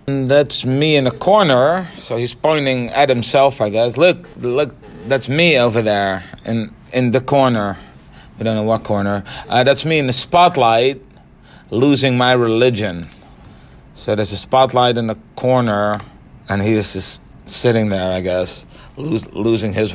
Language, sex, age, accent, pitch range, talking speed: English, male, 30-49, American, 105-140 Hz, 160 wpm